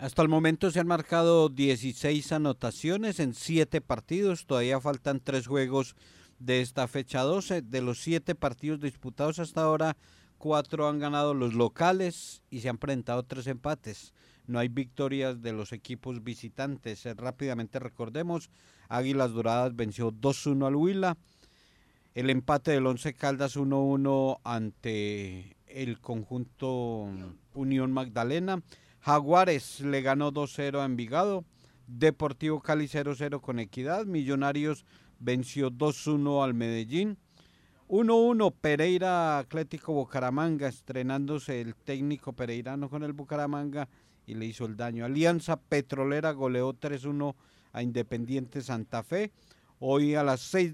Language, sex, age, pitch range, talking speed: Spanish, male, 50-69, 125-150 Hz, 125 wpm